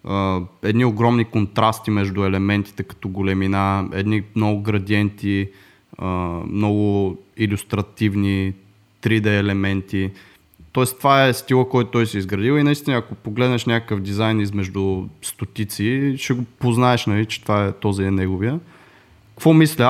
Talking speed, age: 135 wpm, 20-39